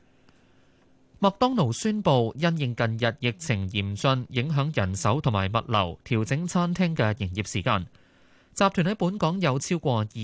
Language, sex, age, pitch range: Chinese, male, 20-39, 110-145 Hz